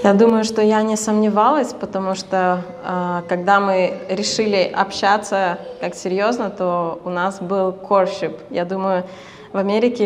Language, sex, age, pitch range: Russian, female, 20-39, 195-235 Hz